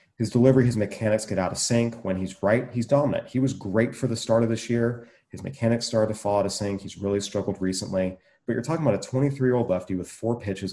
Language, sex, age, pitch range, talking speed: English, male, 30-49, 95-120 Hz, 245 wpm